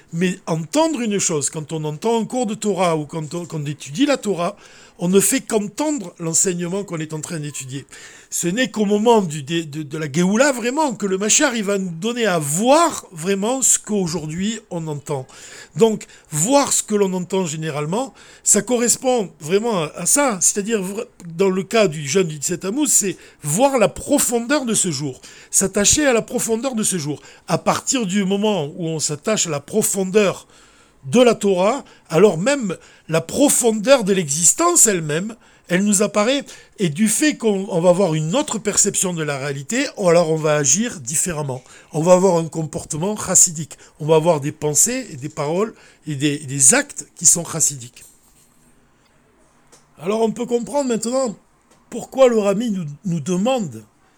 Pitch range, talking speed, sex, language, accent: 165-225 Hz, 175 wpm, male, French, French